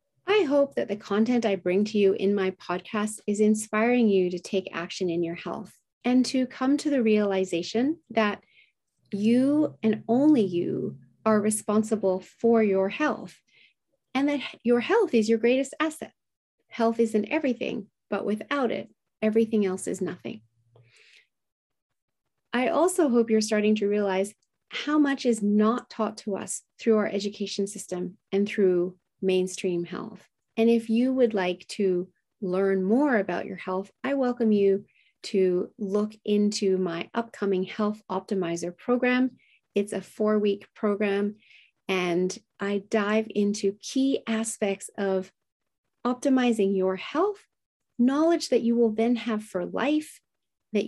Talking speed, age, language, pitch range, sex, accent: 145 wpm, 30-49, English, 195-240 Hz, female, American